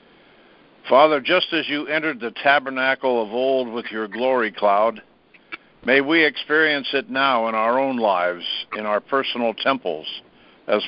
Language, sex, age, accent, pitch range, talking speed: English, male, 60-79, American, 110-135 Hz, 150 wpm